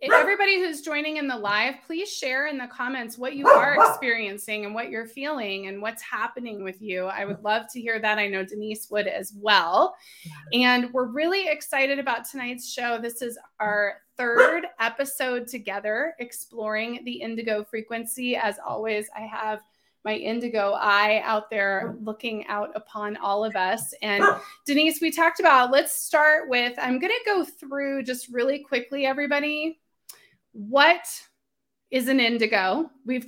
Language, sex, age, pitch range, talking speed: English, female, 20-39, 215-290 Hz, 165 wpm